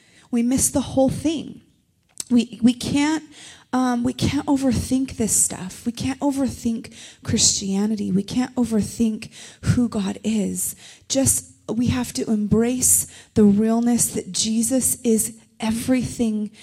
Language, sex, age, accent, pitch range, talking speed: English, female, 30-49, American, 200-245 Hz, 125 wpm